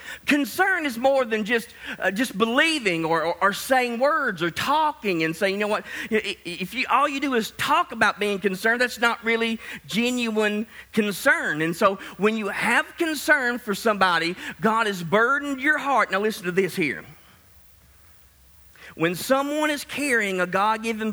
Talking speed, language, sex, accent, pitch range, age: 170 wpm, English, male, American, 185-250 Hz, 40-59